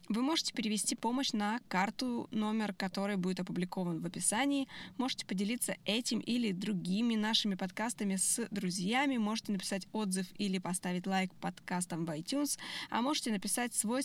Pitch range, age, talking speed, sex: 195-255 Hz, 20-39, 145 wpm, female